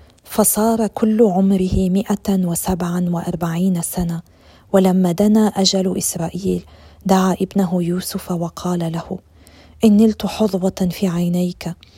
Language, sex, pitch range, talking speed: Arabic, female, 175-195 Hz, 95 wpm